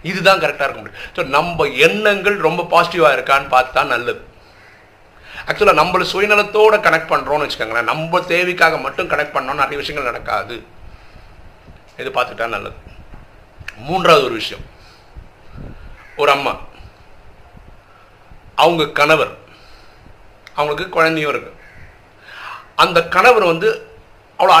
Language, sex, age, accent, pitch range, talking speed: Tamil, male, 50-69, native, 130-200 Hz, 60 wpm